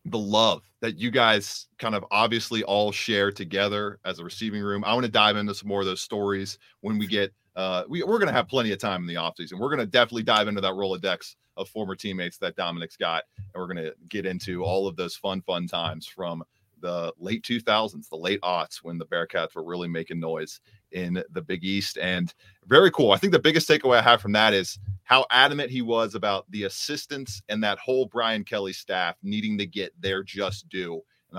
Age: 30-49